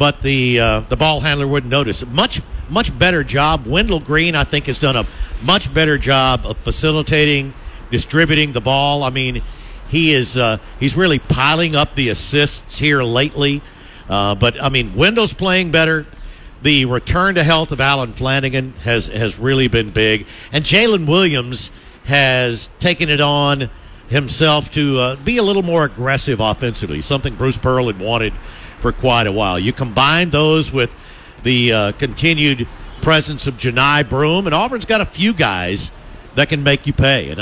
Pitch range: 120-155 Hz